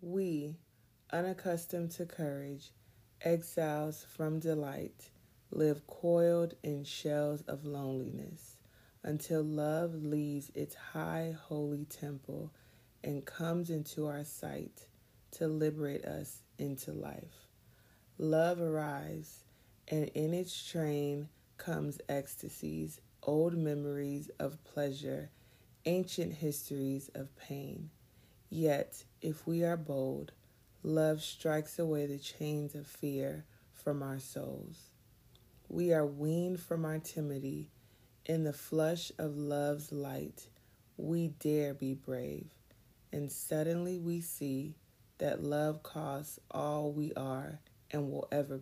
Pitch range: 135-155 Hz